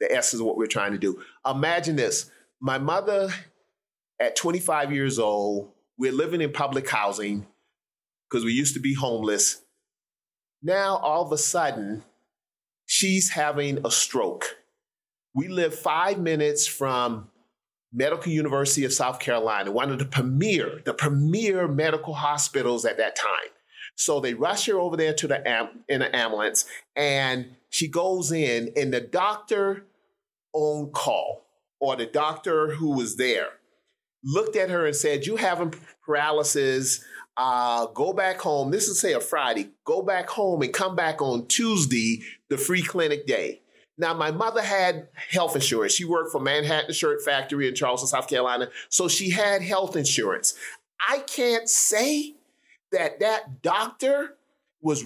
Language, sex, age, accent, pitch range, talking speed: English, male, 40-59, American, 135-200 Hz, 155 wpm